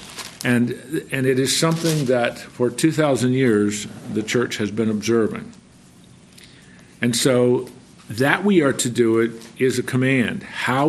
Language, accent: English, American